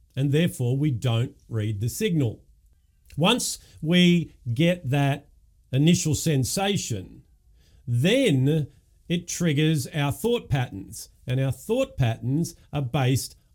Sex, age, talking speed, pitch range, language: male, 50-69, 110 wpm, 120-165 Hz, English